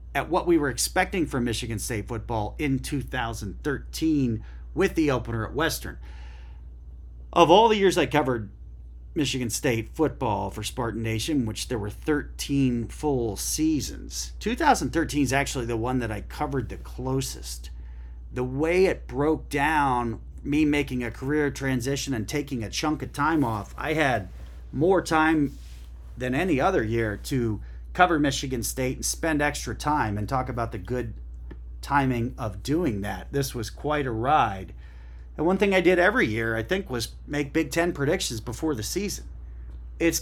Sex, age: male, 40-59